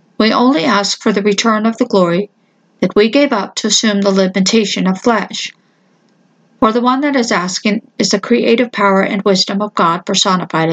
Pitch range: 200-235 Hz